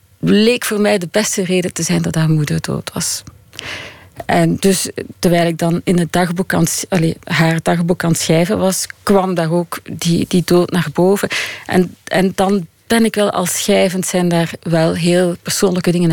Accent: Dutch